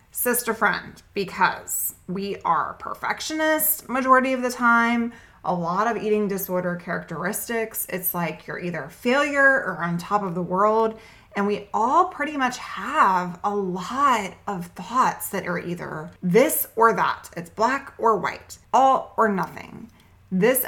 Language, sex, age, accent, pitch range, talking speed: English, female, 20-39, American, 185-235 Hz, 150 wpm